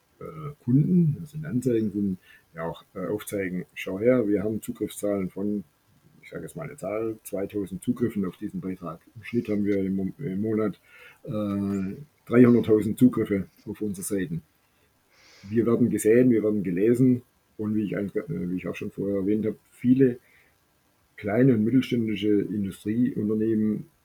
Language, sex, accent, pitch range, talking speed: German, male, German, 100-120 Hz, 140 wpm